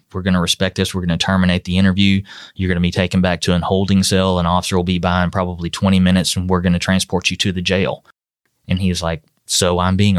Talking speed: 270 wpm